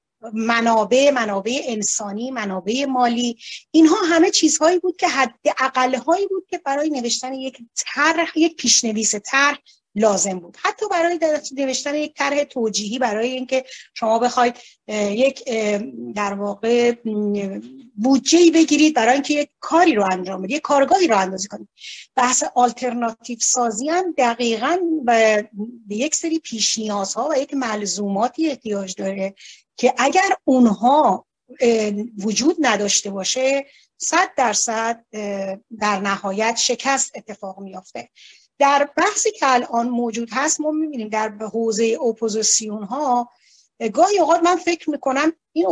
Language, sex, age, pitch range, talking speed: Persian, female, 40-59, 220-295 Hz, 125 wpm